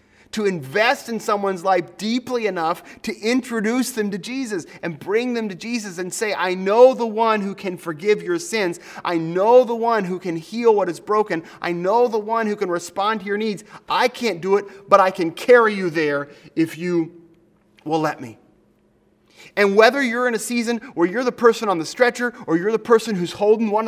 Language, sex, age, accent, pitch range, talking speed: English, male, 30-49, American, 155-225 Hz, 210 wpm